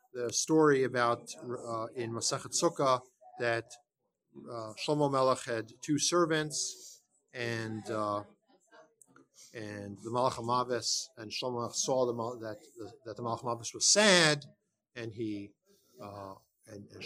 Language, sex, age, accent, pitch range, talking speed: English, male, 50-69, American, 120-160 Hz, 105 wpm